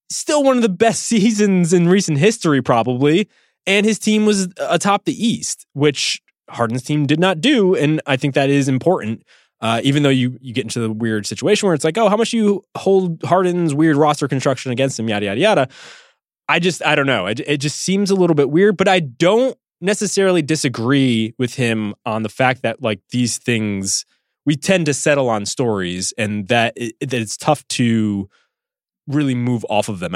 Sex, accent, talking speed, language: male, American, 205 wpm, English